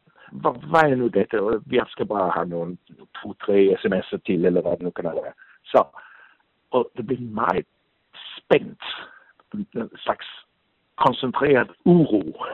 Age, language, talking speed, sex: 60-79, English, 160 wpm, male